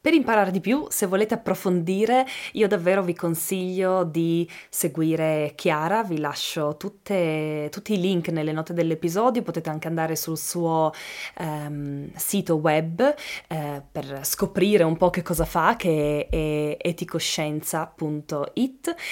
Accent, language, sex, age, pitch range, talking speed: native, Italian, female, 20-39, 160-195 Hz, 125 wpm